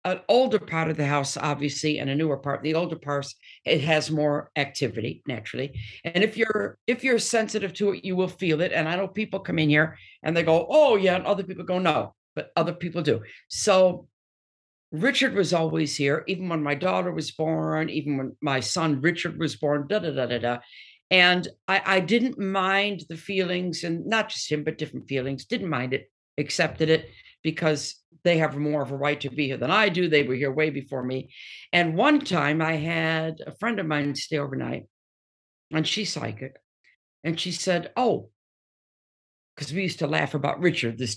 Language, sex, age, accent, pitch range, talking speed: English, female, 60-79, American, 145-190 Hz, 205 wpm